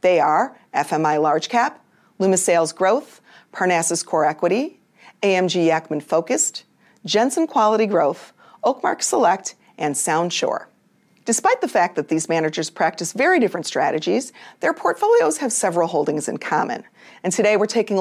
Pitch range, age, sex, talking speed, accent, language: 165-235 Hz, 40-59, female, 140 wpm, American, English